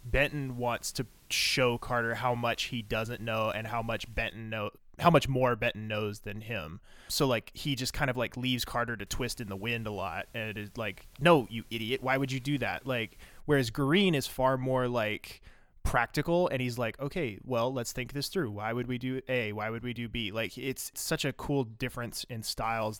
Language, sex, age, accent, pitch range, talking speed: English, male, 20-39, American, 110-130 Hz, 220 wpm